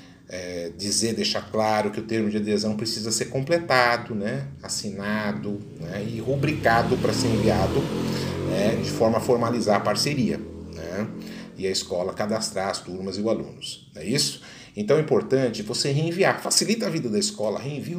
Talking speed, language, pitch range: 165 wpm, Portuguese, 100-125 Hz